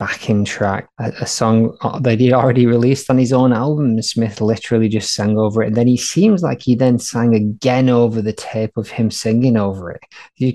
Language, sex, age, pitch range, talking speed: English, male, 20-39, 110-135 Hz, 205 wpm